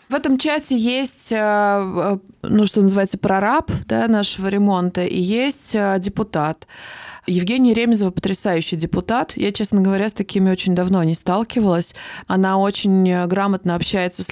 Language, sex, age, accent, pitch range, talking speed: Russian, female, 20-39, native, 180-215 Hz, 130 wpm